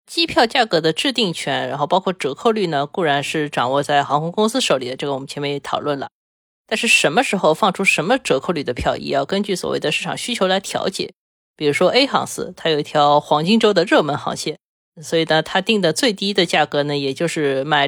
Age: 20-39